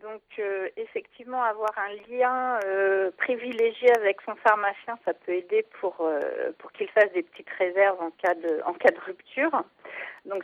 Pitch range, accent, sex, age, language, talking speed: 190-250 Hz, French, female, 40-59, French, 170 wpm